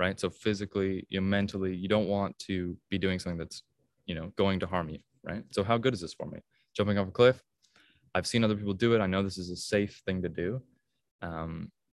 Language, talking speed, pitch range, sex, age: English, 230 wpm, 90-105 Hz, male, 20-39